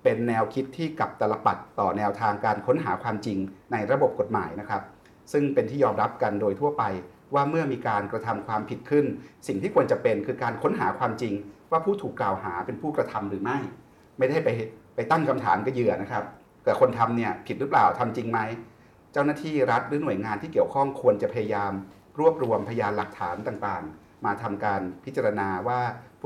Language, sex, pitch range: Thai, male, 110-145 Hz